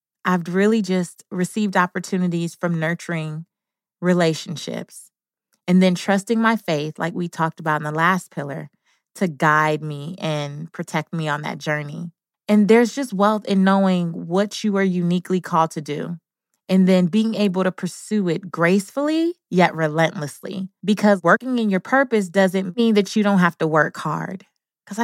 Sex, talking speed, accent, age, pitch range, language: female, 165 wpm, American, 20-39, 170-215 Hz, English